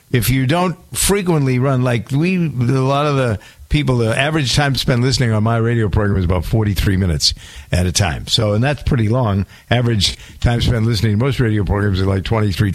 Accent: American